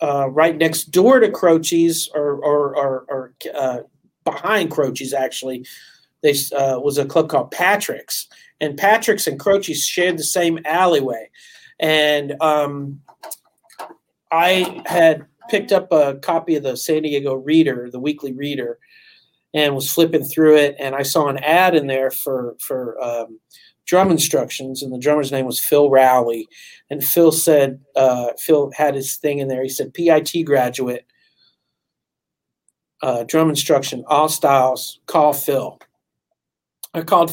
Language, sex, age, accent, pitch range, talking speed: English, male, 40-59, American, 135-160 Hz, 150 wpm